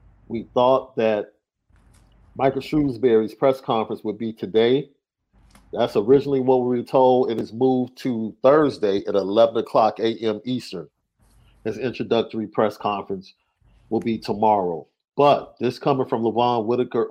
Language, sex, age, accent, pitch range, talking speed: English, male, 40-59, American, 110-135 Hz, 135 wpm